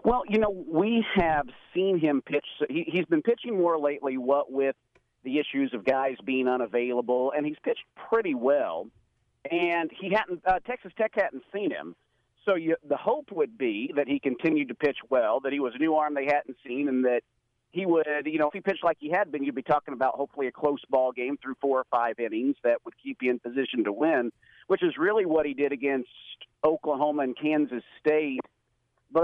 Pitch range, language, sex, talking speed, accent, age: 130-170 Hz, English, male, 210 wpm, American, 50-69